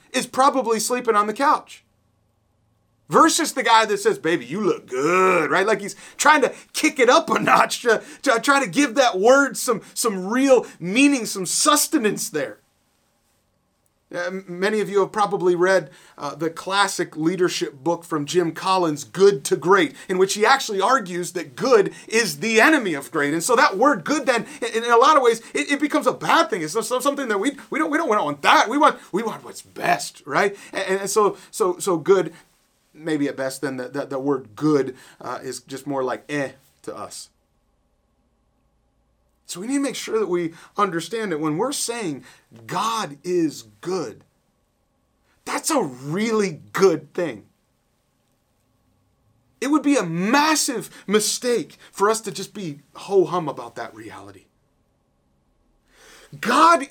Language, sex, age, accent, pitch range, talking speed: English, male, 30-49, American, 165-270 Hz, 175 wpm